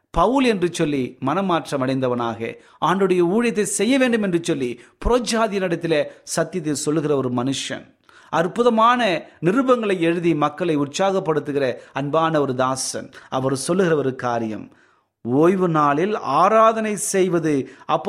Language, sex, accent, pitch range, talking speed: Tamil, male, native, 145-220 Hz, 100 wpm